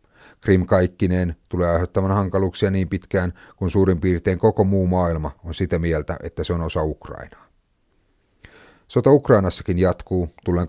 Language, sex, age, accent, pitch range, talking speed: Finnish, male, 30-49, native, 85-95 Hz, 140 wpm